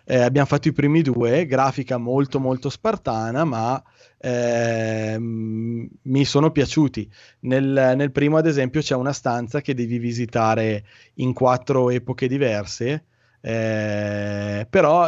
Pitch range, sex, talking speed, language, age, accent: 115-140 Hz, male, 125 wpm, Italian, 20-39, native